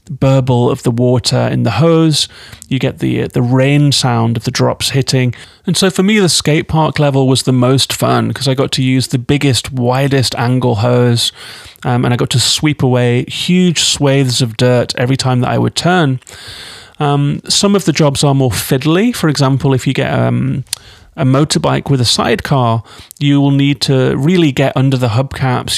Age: 30-49